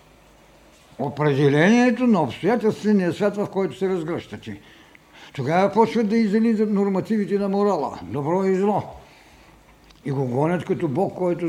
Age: 60-79